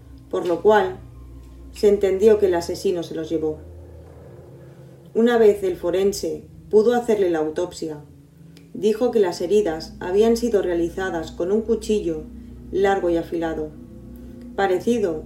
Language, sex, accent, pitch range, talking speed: Spanish, female, Spanish, 155-205 Hz, 130 wpm